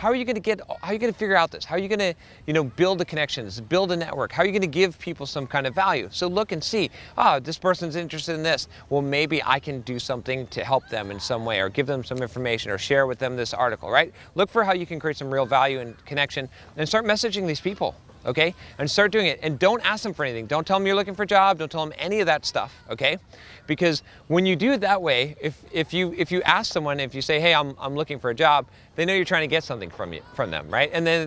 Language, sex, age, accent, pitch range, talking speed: English, male, 30-49, American, 135-175 Hz, 290 wpm